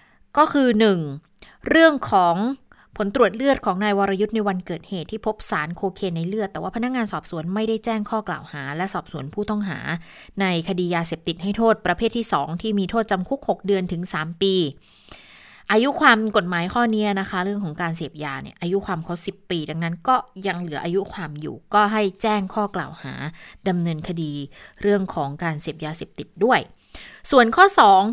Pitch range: 175-220 Hz